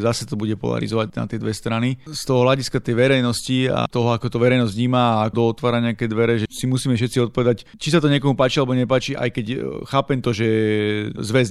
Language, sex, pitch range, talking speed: Slovak, male, 115-130 Hz, 220 wpm